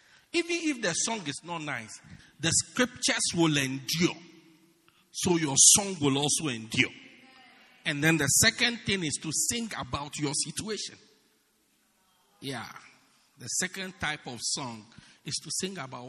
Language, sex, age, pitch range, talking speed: English, male, 50-69, 135-185 Hz, 140 wpm